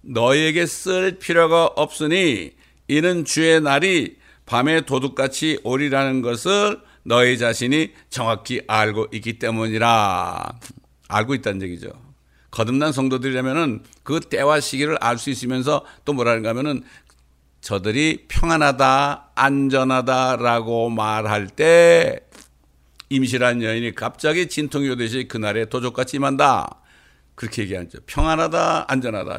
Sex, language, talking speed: male, English, 95 wpm